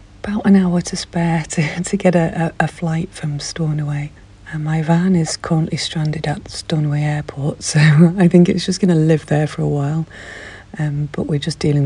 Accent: British